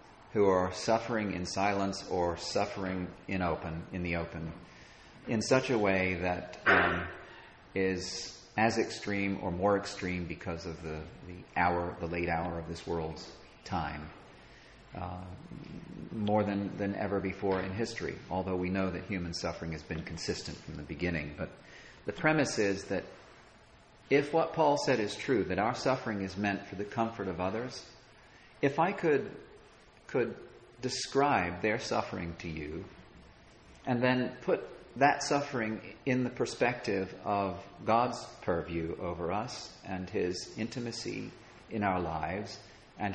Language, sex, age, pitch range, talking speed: English, male, 40-59, 90-110 Hz, 145 wpm